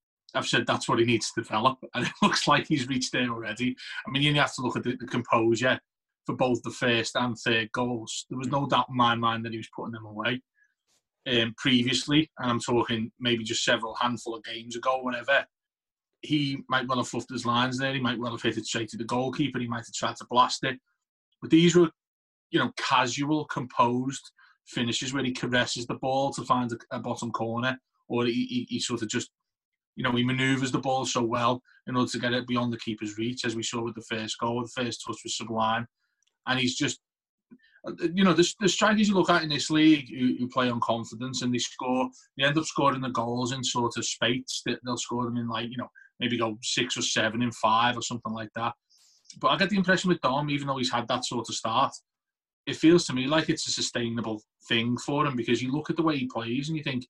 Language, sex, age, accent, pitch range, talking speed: English, male, 30-49, British, 115-135 Hz, 240 wpm